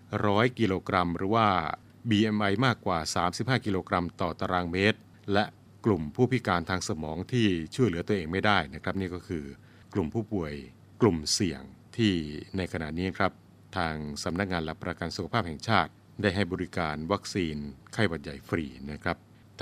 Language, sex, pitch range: Thai, male, 90-110 Hz